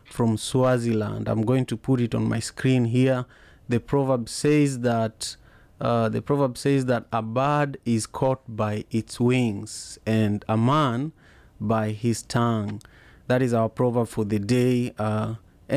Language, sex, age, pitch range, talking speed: English, male, 30-49, 110-130 Hz, 155 wpm